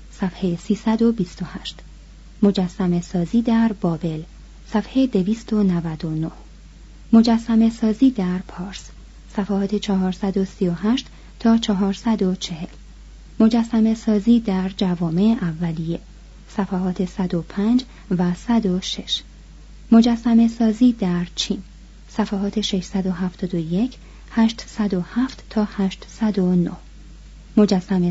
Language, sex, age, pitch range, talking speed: Persian, female, 30-49, 180-225 Hz, 75 wpm